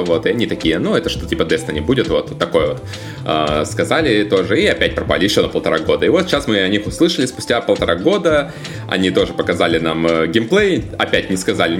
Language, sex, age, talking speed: Russian, male, 20-39, 220 wpm